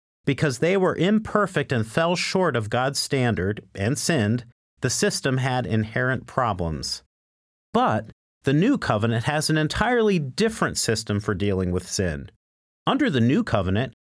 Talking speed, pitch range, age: 145 wpm, 105-155 Hz, 50-69